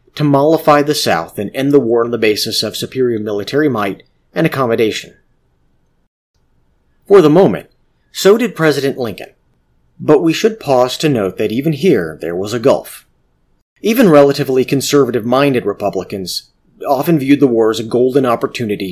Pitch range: 100-145 Hz